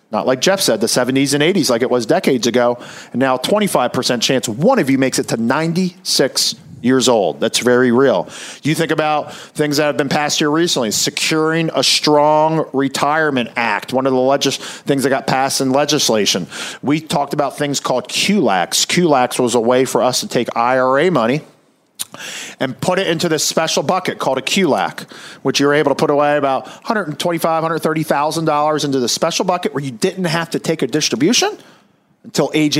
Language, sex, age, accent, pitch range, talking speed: English, male, 40-59, American, 130-160 Hz, 195 wpm